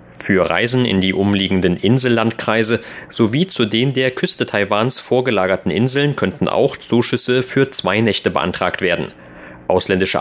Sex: male